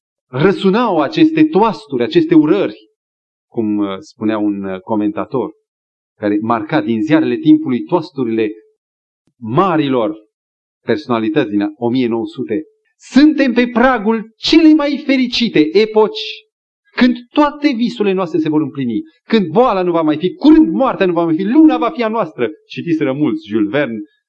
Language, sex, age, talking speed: Romanian, male, 40-59, 135 wpm